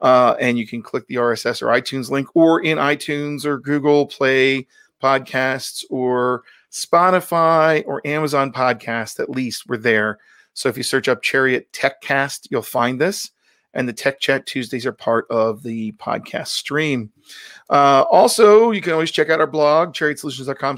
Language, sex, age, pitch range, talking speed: English, male, 40-59, 125-150 Hz, 165 wpm